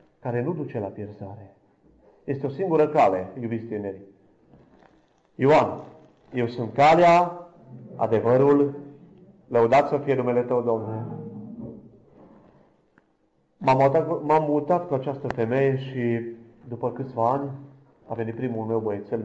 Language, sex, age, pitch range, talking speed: Romanian, male, 30-49, 115-155 Hz, 110 wpm